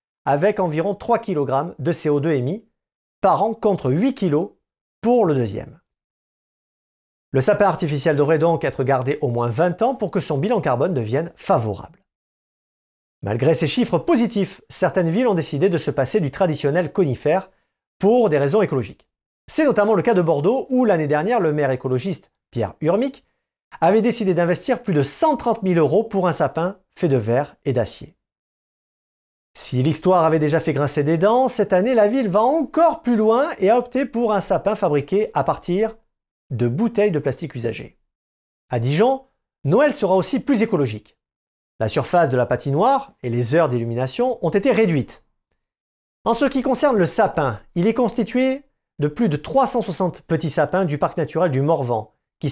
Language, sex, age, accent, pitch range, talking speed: French, male, 50-69, French, 140-215 Hz, 175 wpm